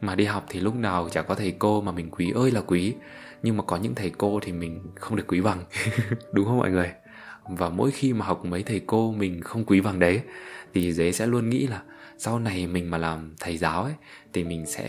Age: 20-39